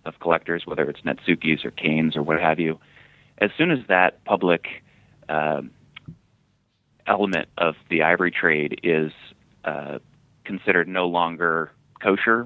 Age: 30-49